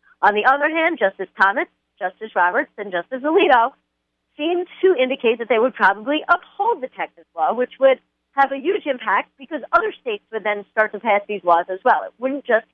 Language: English